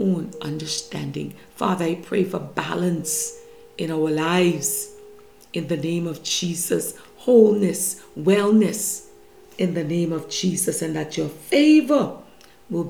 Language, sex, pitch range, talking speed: English, female, 165-230 Hz, 120 wpm